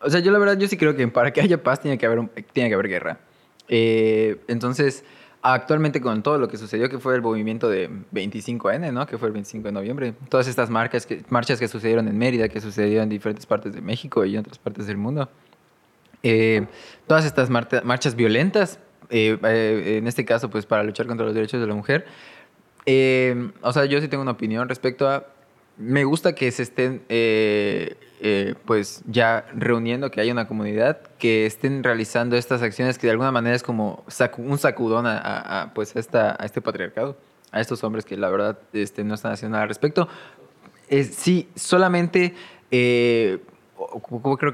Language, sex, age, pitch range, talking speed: English, male, 20-39, 110-130 Hz, 195 wpm